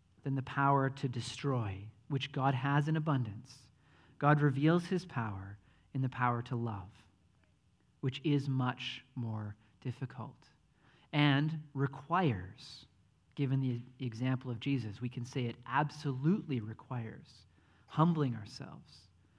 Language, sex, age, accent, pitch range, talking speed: English, male, 40-59, American, 115-145 Hz, 120 wpm